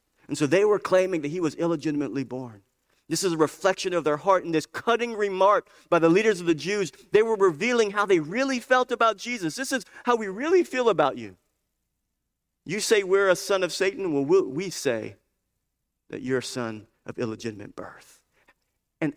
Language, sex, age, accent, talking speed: English, male, 50-69, American, 195 wpm